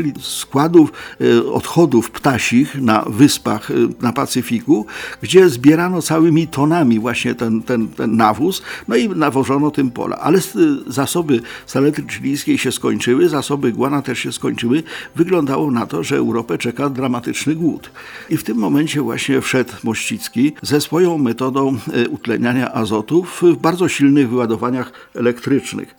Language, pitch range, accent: Polish, 120-155 Hz, native